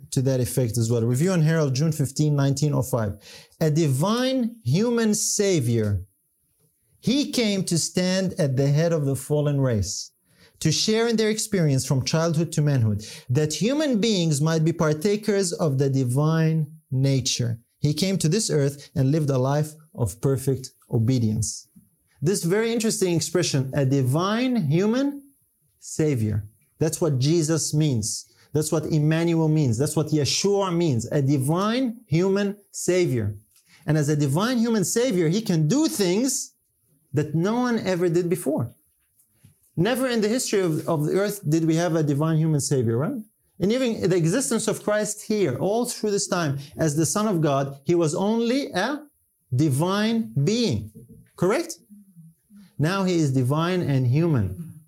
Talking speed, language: 155 wpm, English